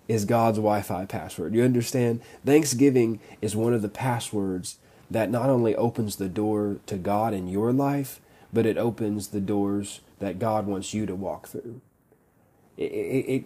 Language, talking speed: English, 160 wpm